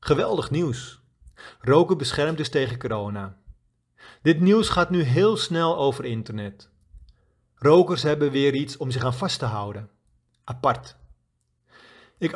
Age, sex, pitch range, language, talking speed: 40-59, male, 115-170 Hz, Dutch, 130 wpm